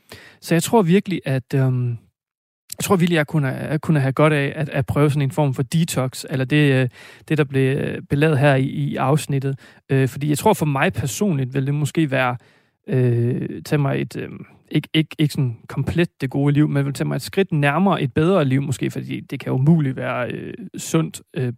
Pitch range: 135-160 Hz